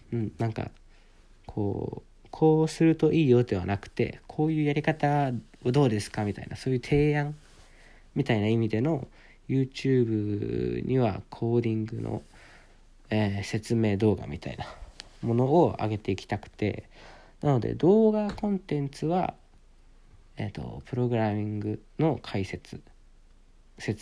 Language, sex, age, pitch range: Japanese, male, 40-59, 100-140 Hz